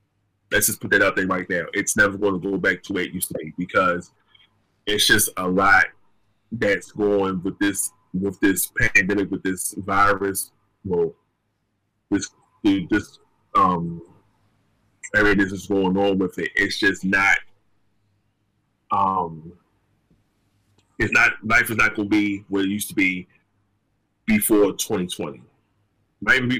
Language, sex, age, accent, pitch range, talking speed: English, male, 20-39, American, 95-105 Hz, 150 wpm